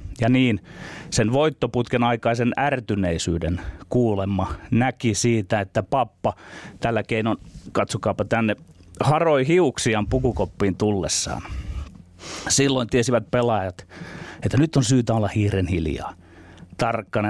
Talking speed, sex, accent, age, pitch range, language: 105 wpm, male, native, 30-49, 95-135 Hz, Finnish